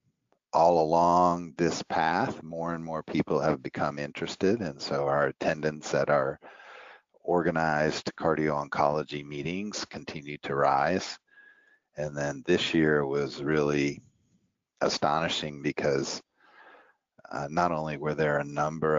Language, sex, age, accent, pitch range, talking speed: English, male, 50-69, American, 75-85 Hz, 125 wpm